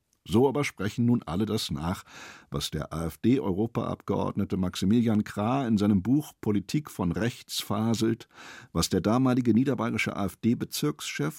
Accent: German